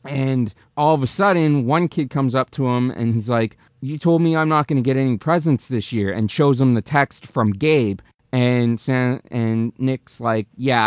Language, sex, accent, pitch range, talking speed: English, male, American, 125-160 Hz, 215 wpm